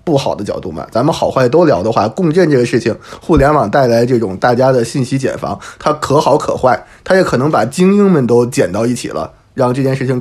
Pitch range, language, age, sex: 120-145 Hz, Chinese, 20-39, male